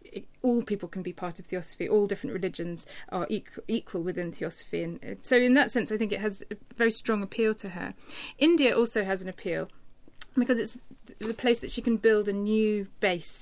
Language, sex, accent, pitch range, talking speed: English, female, British, 185-225 Hz, 205 wpm